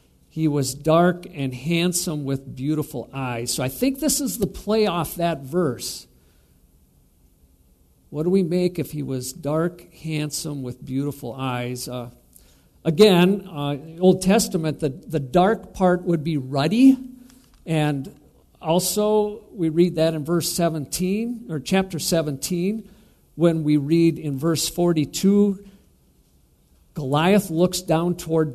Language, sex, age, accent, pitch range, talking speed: English, male, 50-69, American, 140-185 Hz, 140 wpm